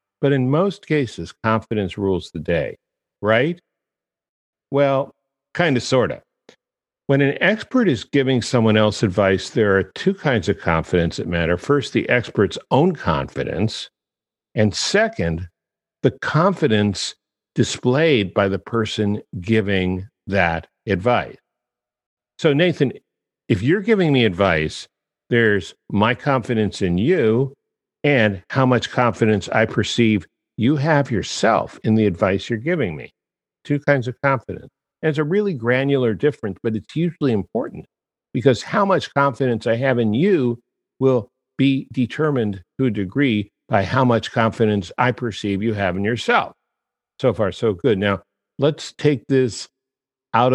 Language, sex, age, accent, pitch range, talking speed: English, male, 50-69, American, 100-135 Hz, 140 wpm